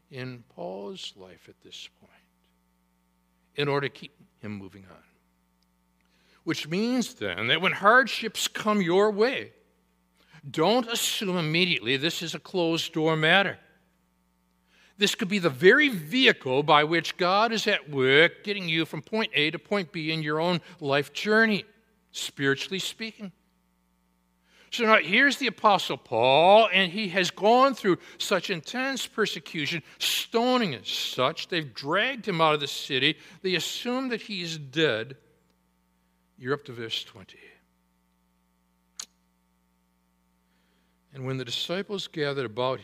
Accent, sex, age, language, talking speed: American, male, 60-79, English, 135 wpm